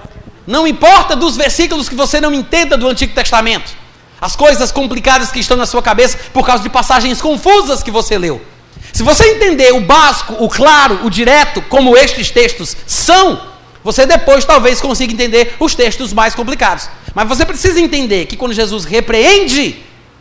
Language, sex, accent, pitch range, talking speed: Portuguese, male, Brazilian, 230-315 Hz, 170 wpm